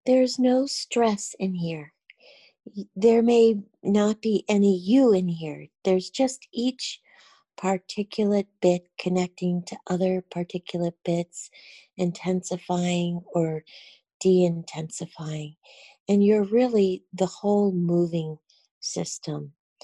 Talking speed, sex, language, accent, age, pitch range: 105 wpm, female, English, American, 40-59, 170-200 Hz